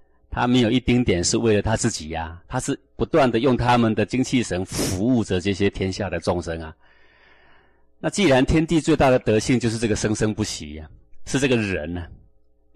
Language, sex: Chinese, male